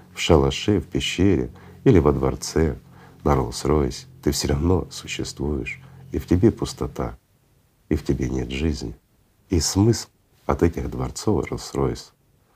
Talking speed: 135 wpm